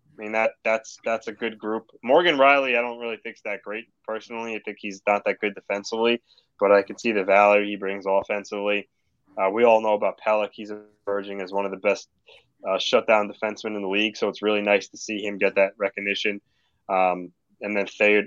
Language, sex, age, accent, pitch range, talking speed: English, male, 20-39, American, 105-120 Hz, 215 wpm